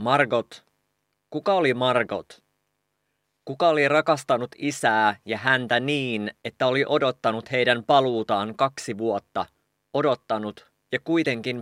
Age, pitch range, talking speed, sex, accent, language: 30-49, 110-135 Hz, 110 wpm, male, Finnish, English